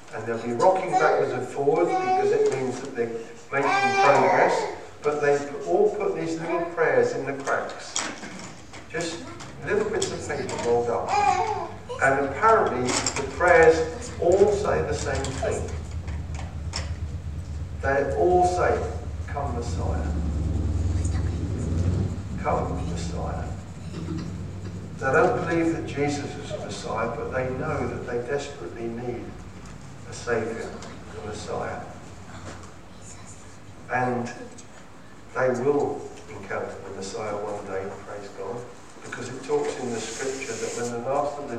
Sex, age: male, 50-69